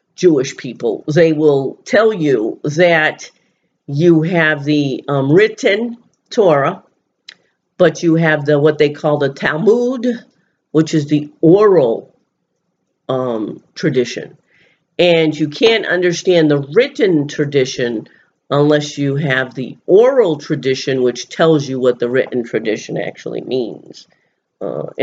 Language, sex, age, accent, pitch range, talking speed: English, female, 50-69, American, 140-175 Hz, 120 wpm